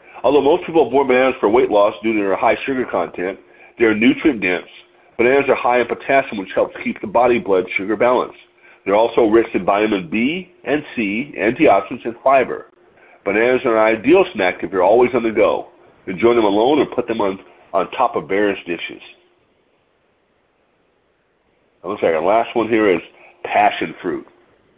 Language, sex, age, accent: English, male, 50-69, American